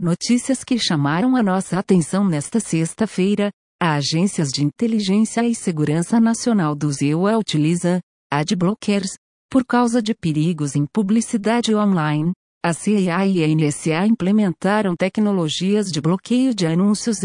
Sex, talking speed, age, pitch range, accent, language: female, 130 wpm, 50-69, 160-220 Hz, Brazilian, Portuguese